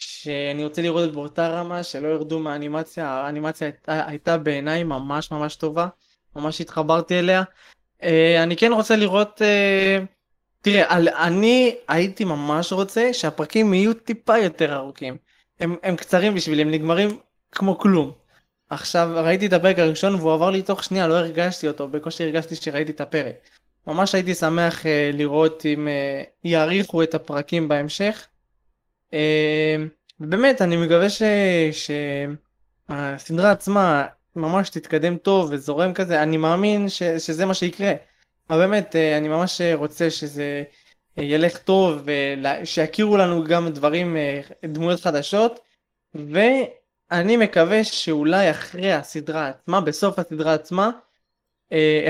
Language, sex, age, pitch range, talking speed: Hebrew, male, 20-39, 155-190 Hz, 135 wpm